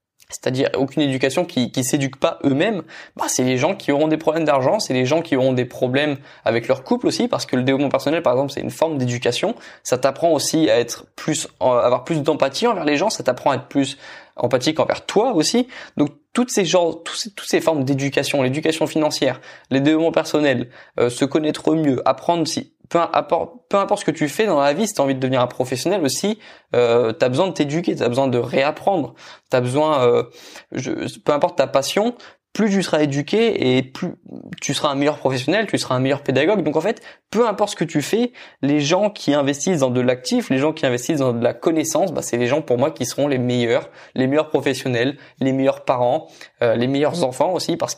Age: 20-39